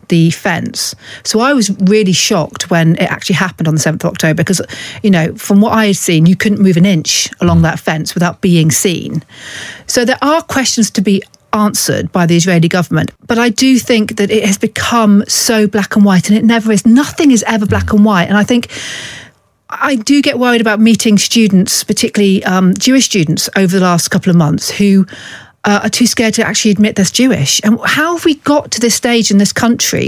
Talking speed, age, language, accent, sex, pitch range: 215 wpm, 40-59, English, British, female, 185-245 Hz